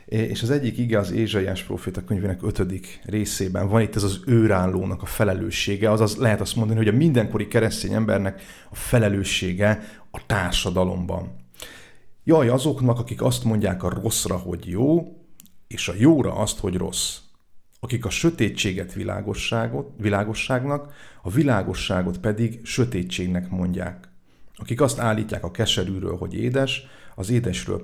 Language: Hungarian